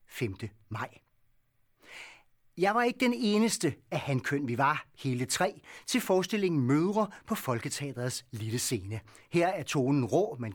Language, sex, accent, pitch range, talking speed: Danish, male, native, 130-185 Hz, 150 wpm